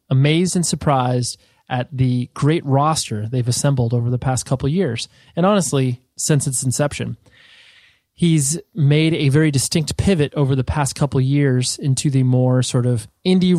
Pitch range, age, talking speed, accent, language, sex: 125-155 Hz, 20-39, 170 wpm, American, English, male